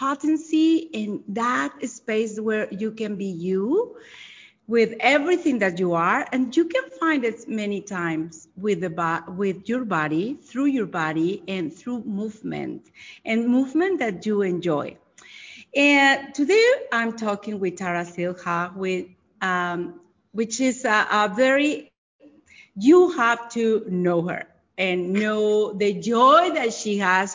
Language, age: English, 40-59